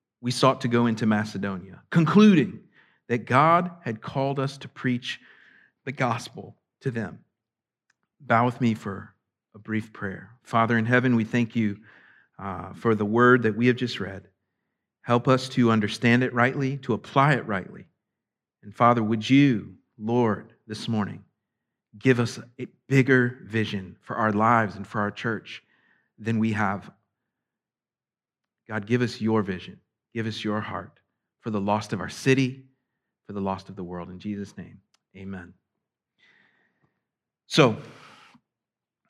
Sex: male